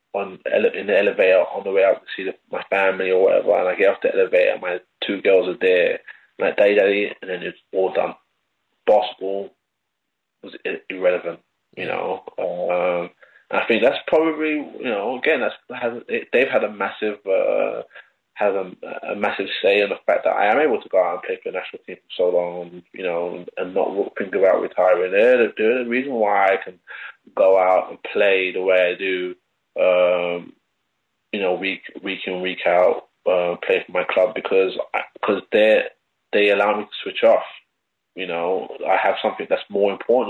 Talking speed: 200 wpm